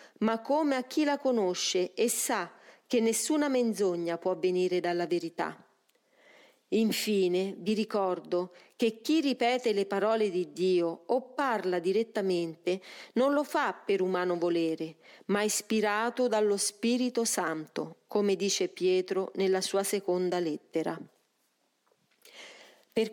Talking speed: 120 wpm